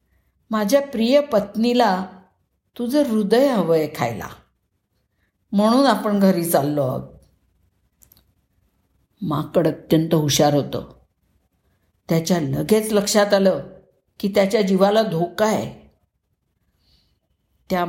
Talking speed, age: 90 wpm, 50-69